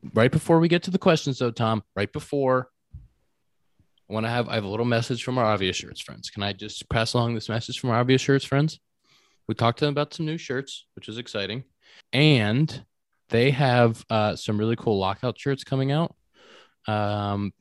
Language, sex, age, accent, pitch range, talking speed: English, male, 20-39, American, 100-120 Hz, 205 wpm